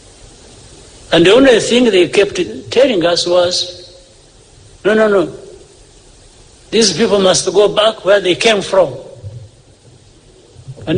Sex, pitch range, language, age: male, 115-180 Hz, English, 60-79